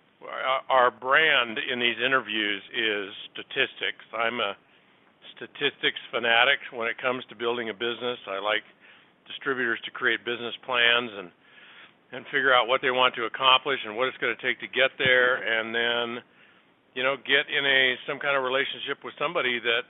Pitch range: 115-130 Hz